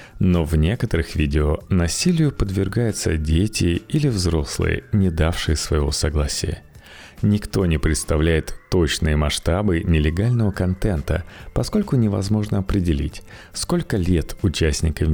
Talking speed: 105 wpm